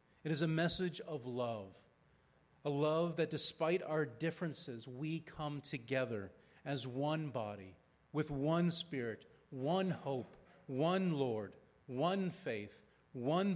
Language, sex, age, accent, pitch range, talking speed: English, male, 40-59, American, 125-170 Hz, 125 wpm